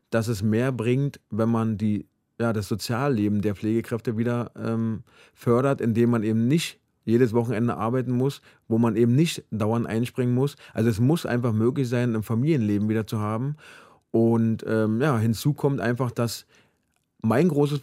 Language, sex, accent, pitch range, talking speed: German, male, German, 110-135 Hz, 160 wpm